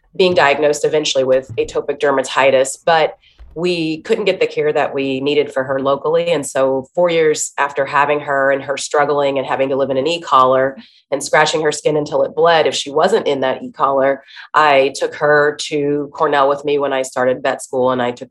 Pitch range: 130-155 Hz